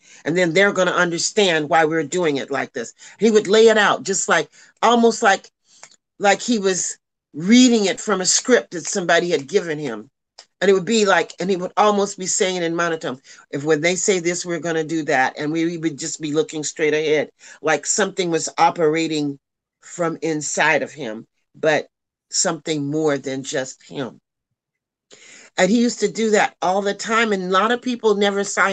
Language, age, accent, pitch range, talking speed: English, 40-59, American, 150-200 Hz, 200 wpm